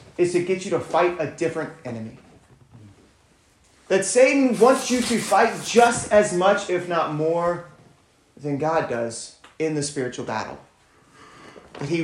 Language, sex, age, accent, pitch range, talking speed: English, male, 30-49, American, 125-185 Hz, 150 wpm